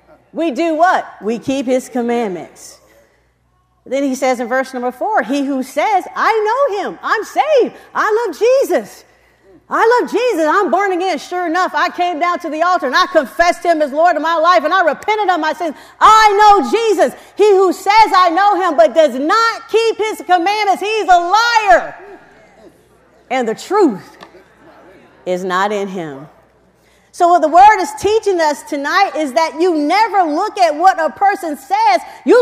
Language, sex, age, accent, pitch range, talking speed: English, female, 40-59, American, 290-390 Hz, 180 wpm